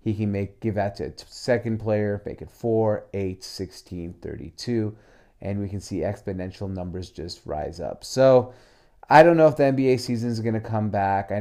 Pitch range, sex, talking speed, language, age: 100-110 Hz, male, 200 wpm, English, 30-49